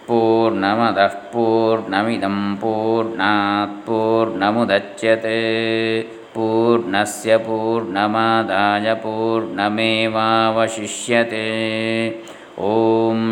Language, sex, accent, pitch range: Kannada, male, native, 110-135 Hz